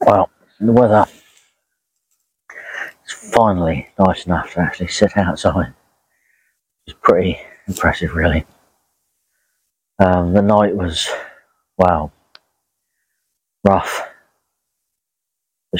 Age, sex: 40-59, male